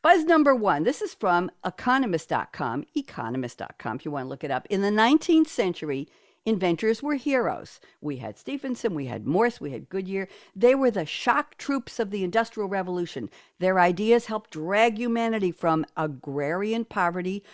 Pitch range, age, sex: 160-245 Hz, 60-79, female